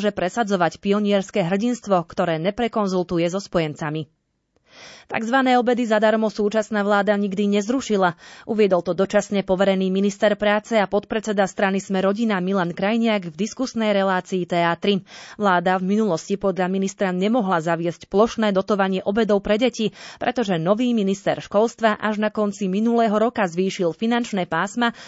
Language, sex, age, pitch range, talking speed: Slovak, female, 30-49, 180-220 Hz, 135 wpm